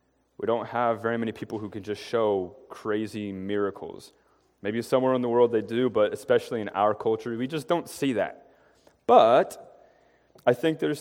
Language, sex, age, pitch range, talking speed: English, male, 30-49, 105-135 Hz, 180 wpm